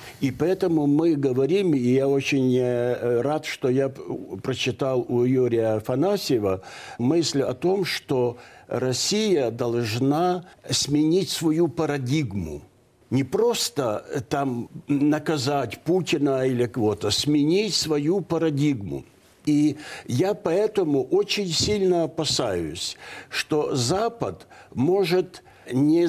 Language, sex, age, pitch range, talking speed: Russian, male, 60-79, 125-170 Hz, 100 wpm